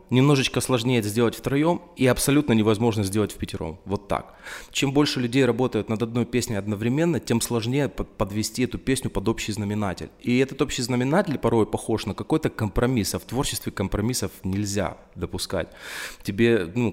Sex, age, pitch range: male, 20-39, 100-115 Hz